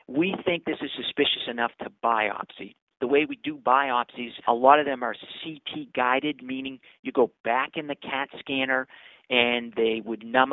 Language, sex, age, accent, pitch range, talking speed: English, male, 40-59, American, 125-145 Hz, 180 wpm